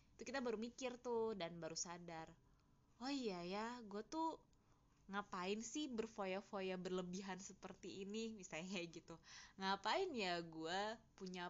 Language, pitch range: Indonesian, 160-215 Hz